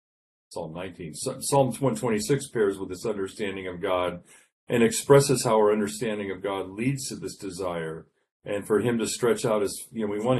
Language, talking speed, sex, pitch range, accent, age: English, 185 wpm, male, 95-125 Hz, American, 40-59